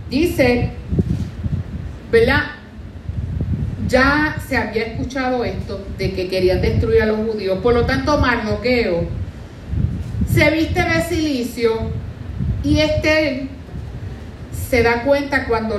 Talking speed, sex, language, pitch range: 105 wpm, female, Spanish, 205-295 Hz